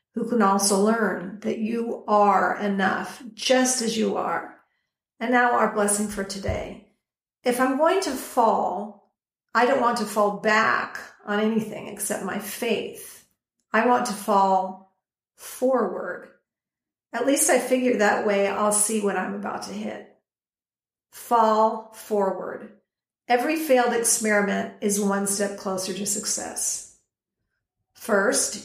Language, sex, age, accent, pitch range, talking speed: English, female, 50-69, American, 205-245 Hz, 135 wpm